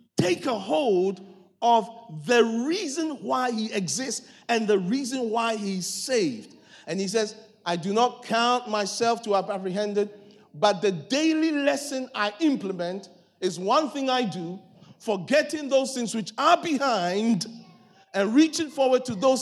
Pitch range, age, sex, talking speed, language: 195-260 Hz, 50-69, male, 150 wpm, English